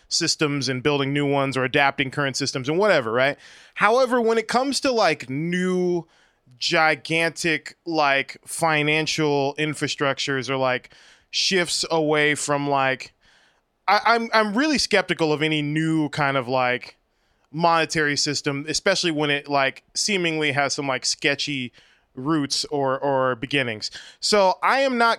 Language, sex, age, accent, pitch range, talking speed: English, male, 20-39, American, 135-170 Hz, 140 wpm